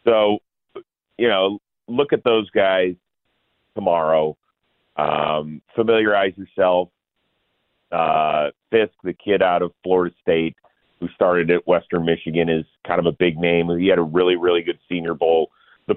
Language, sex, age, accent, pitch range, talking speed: English, male, 40-59, American, 80-90 Hz, 145 wpm